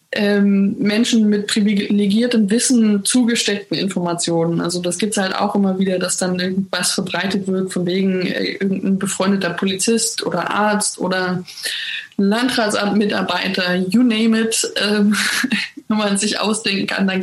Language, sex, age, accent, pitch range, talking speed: German, female, 20-39, German, 185-215 Hz, 135 wpm